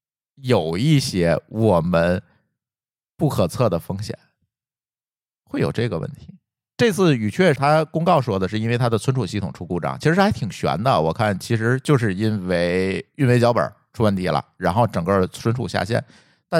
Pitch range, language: 105-155 Hz, Chinese